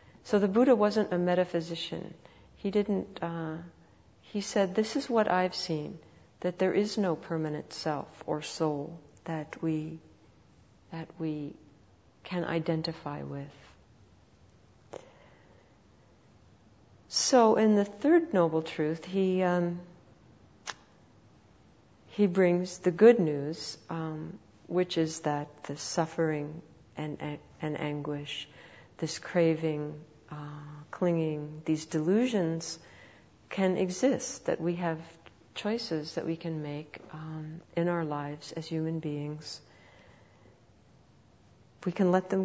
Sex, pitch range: female, 150-180 Hz